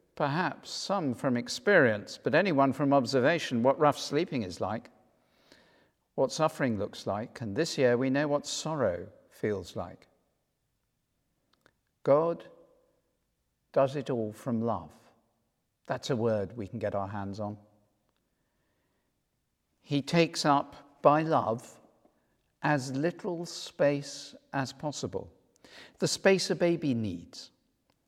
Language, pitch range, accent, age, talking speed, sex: English, 125-170 Hz, British, 50-69, 120 wpm, male